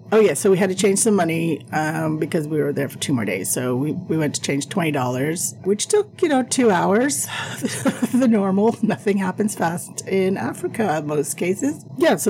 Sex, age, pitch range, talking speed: female, 40-59, 160-220 Hz, 210 wpm